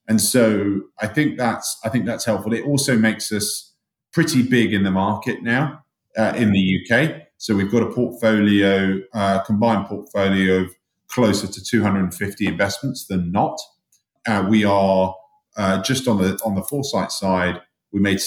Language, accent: English, British